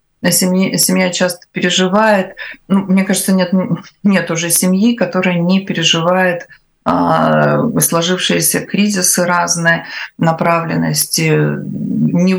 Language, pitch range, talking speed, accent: Russian, 170-225 Hz, 95 wpm, native